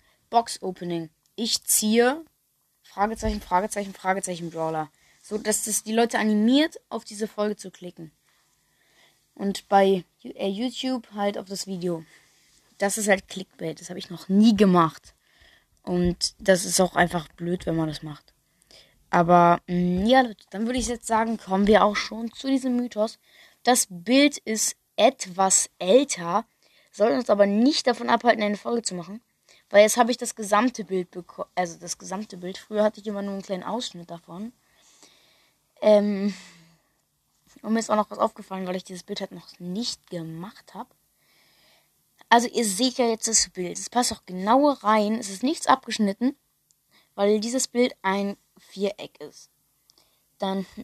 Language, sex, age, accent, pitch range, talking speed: German, female, 20-39, German, 180-230 Hz, 160 wpm